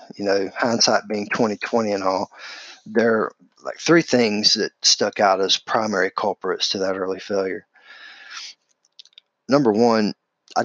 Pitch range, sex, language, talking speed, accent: 100-120 Hz, male, English, 140 wpm, American